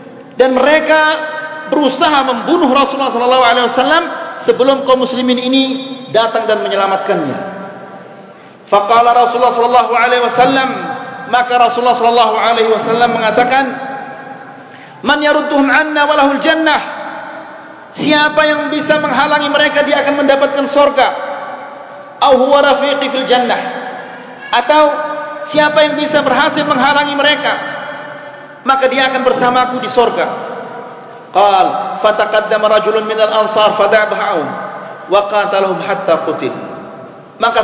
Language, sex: Malay, male